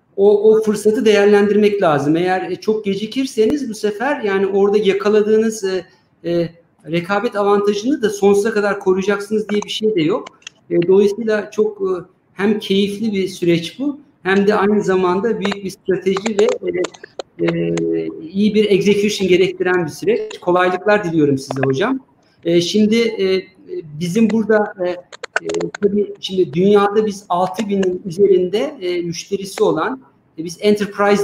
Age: 50-69